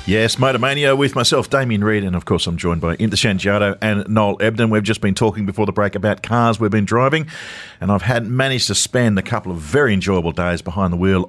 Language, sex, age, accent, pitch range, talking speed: English, male, 50-69, Australian, 95-110 Hz, 235 wpm